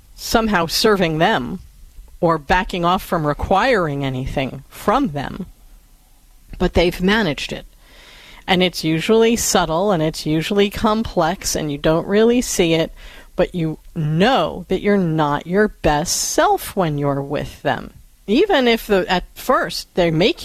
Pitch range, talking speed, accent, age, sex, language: 160-215 Hz, 140 wpm, American, 40-59, female, English